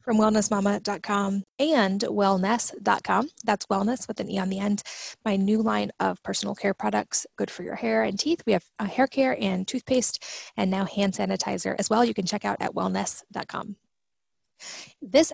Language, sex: English, female